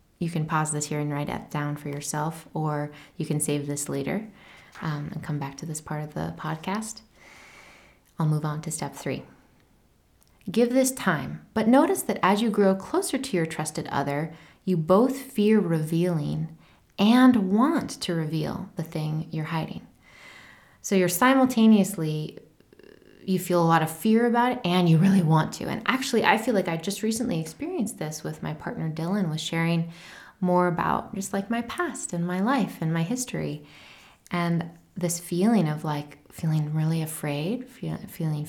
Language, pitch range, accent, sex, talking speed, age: English, 160-215 Hz, American, female, 175 wpm, 20-39